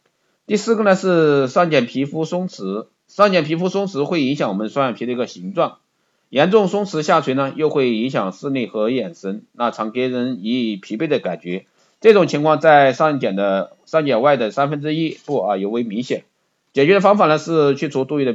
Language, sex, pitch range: Chinese, male, 125-165 Hz